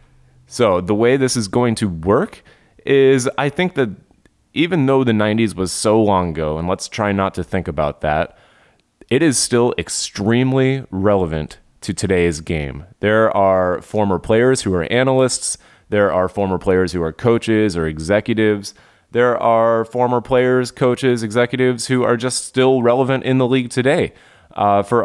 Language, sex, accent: English, male, American